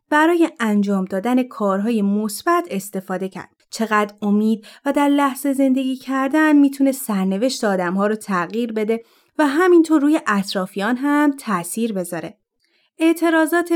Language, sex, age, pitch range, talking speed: Persian, female, 30-49, 205-275 Hz, 120 wpm